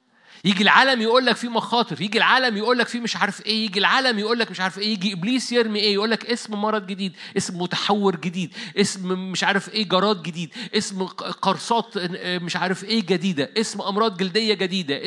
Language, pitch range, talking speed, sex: Arabic, 180-220 Hz, 195 wpm, male